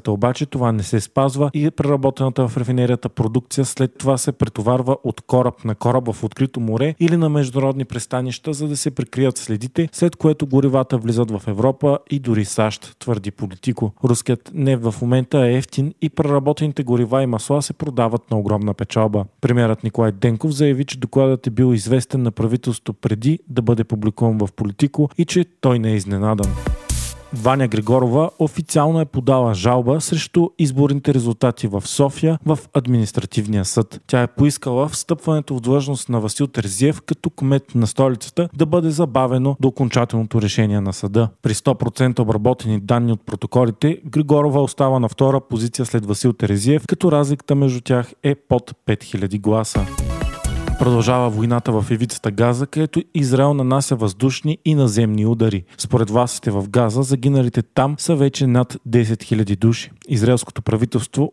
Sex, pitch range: male, 115-140 Hz